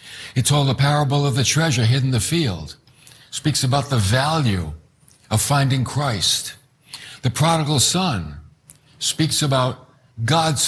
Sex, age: male, 60-79